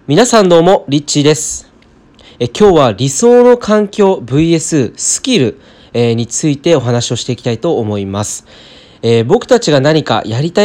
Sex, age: male, 20-39